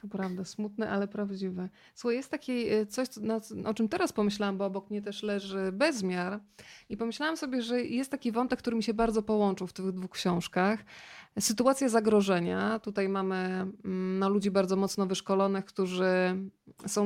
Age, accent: 20-39, native